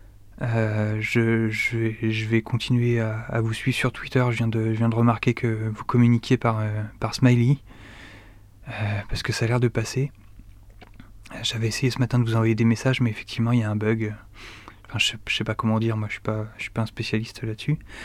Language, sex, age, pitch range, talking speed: French, male, 20-39, 110-125 Hz, 225 wpm